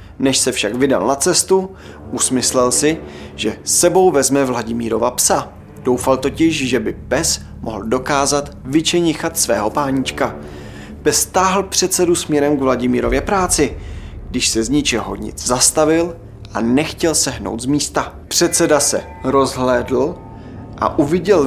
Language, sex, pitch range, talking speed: Czech, male, 115-155 Hz, 130 wpm